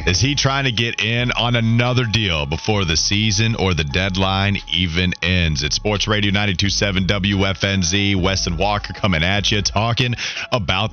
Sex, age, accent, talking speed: male, 30-49, American, 160 wpm